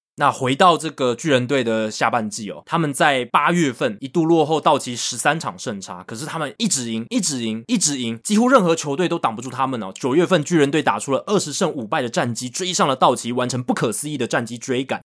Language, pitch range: Chinese, 120-170 Hz